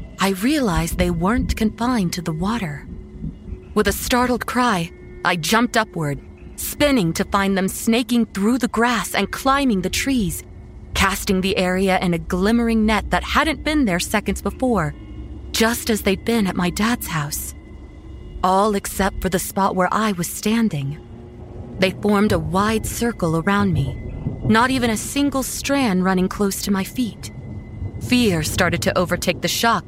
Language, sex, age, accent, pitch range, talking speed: English, female, 30-49, American, 175-230 Hz, 160 wpm